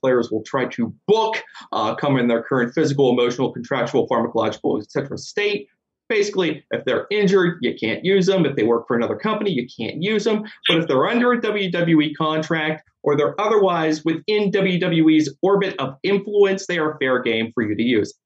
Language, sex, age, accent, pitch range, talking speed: English, male, 30-49, American, 130-190 Hz, 185 wpm